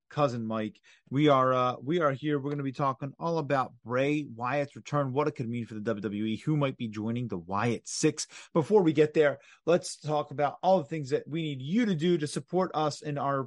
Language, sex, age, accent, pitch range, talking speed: English, male, 30-49, American, 120-150 Hz, 235 wpm